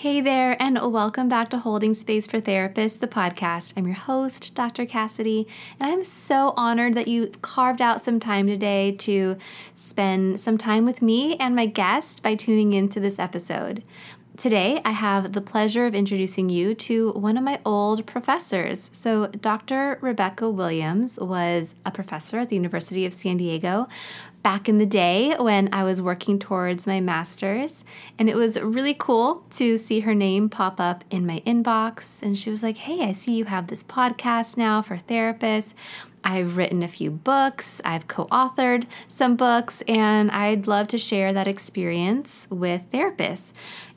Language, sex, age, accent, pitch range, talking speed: English, female, 20-39, American, 190-230 Hz, 170 wpm